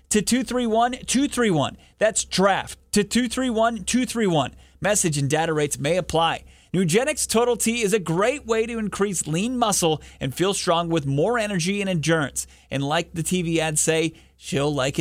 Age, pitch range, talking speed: 30-49, 150-210 Hz, 155 wpm